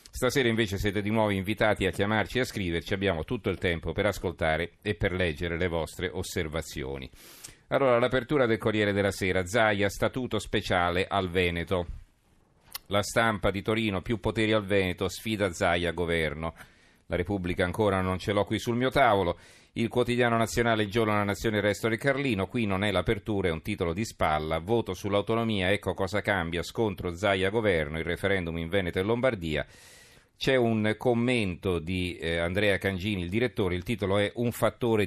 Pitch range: 90-115 Hz